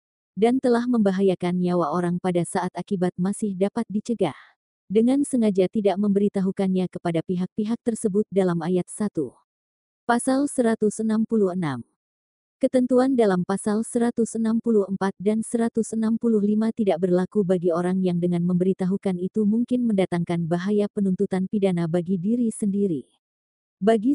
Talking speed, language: 115 wpm, Indonesian